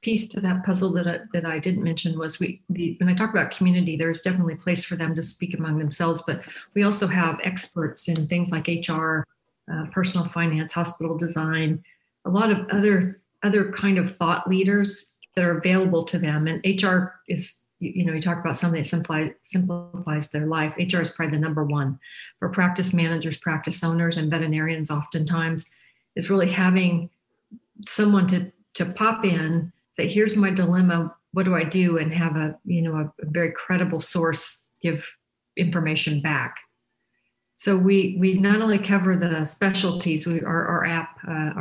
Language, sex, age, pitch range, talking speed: English, female, 50-69, 160-185 Hz, 180 wpm